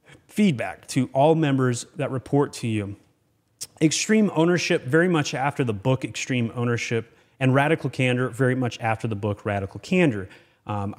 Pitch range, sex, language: 120-155 Hz, male, English